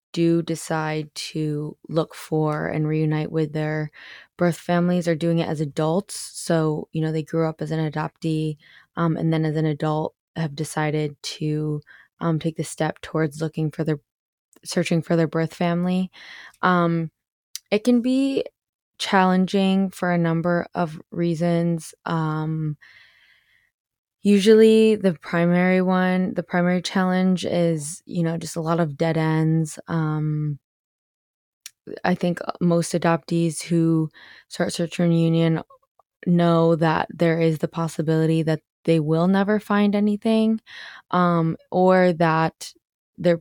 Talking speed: 135 wpm